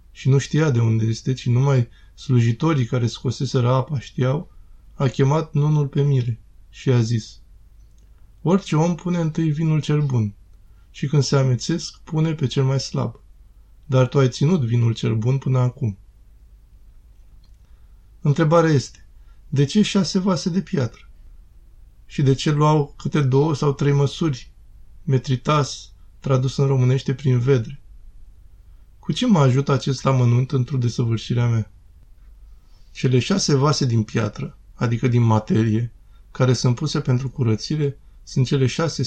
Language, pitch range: Romanian, 110-140 Hz